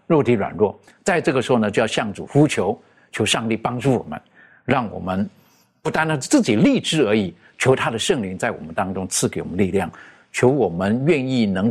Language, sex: Chinese, male